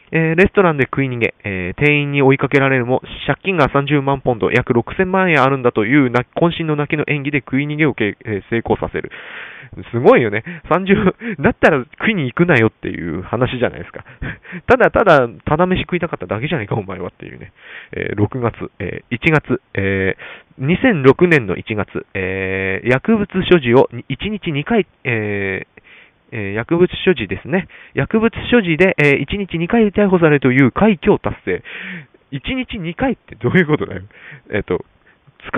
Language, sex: Japanese, male